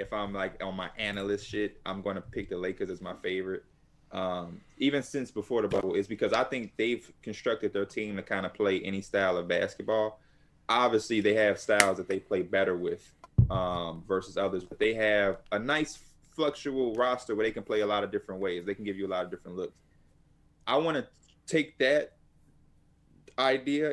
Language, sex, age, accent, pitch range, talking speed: English, male, 20-39, American, 100-130 Hz, 205 wpm